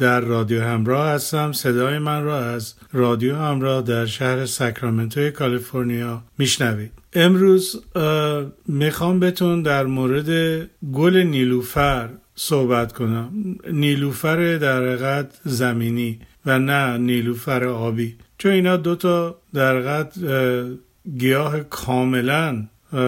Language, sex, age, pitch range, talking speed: Persian, male, 50-69, 125-160 Hz, 95 wpm